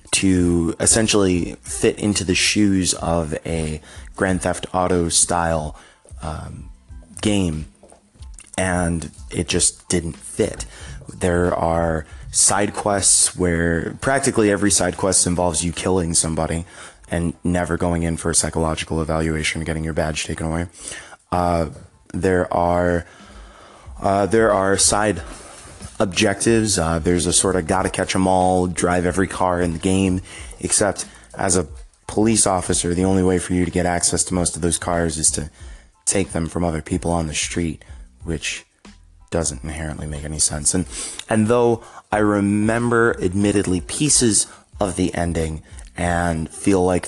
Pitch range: 80-95 Hz